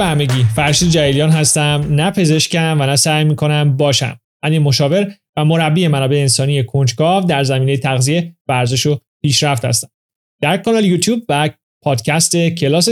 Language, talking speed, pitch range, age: Persian, 145 wpm, 140-180 Hz, 30-49